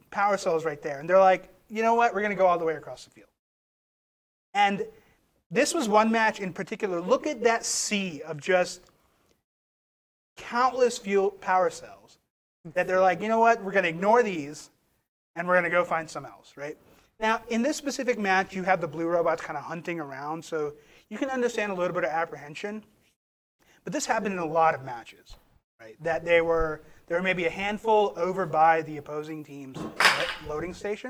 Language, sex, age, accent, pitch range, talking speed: English, male, 30-49, American, 160-210 Hz, 195 wpm